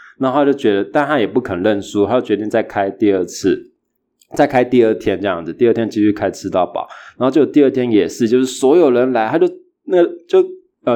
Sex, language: male, Chinese